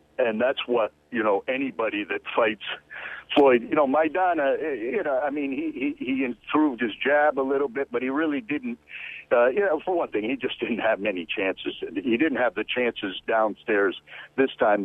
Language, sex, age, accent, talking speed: English, male, 60-79, American, 200 wpm